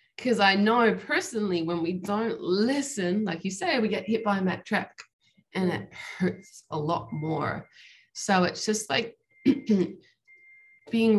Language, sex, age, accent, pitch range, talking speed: English, female, 20-39, Australian, 175-220 Hz, 155 wpm